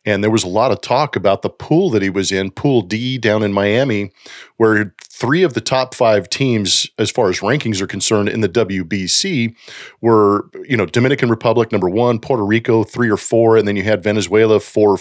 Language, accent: English, American